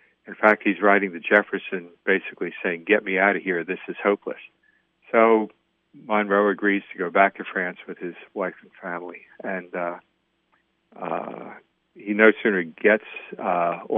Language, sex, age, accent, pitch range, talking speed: English, male, 50-69, American, 90-105 Hz, 160 wpm